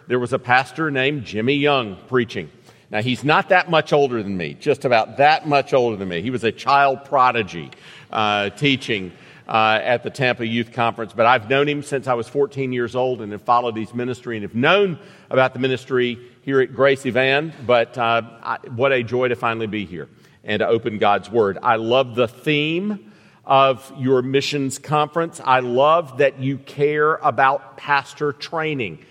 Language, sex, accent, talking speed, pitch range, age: English, male, American, 190 wpm, 120-145 Hz, 50-69